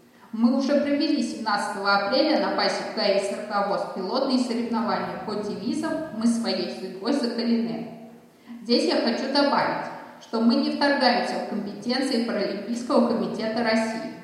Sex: female